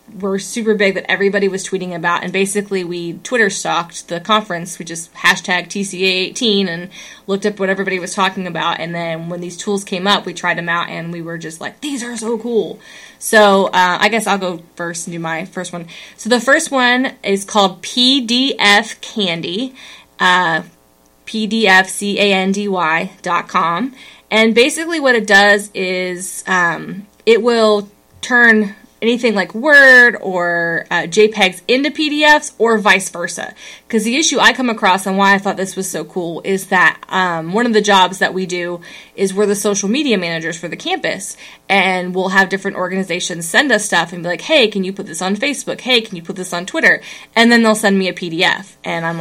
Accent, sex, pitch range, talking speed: American, female, 175-220 Hz, 195 wpm